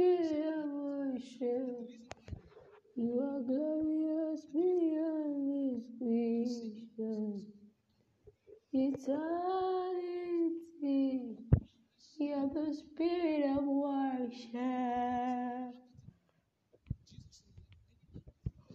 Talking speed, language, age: 55 wpm, English, 20-39